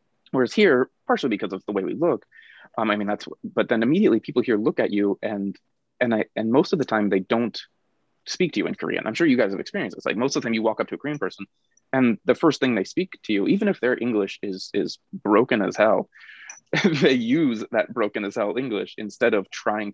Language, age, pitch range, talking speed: English, 20-39, 100-125 Hz, 245 wpm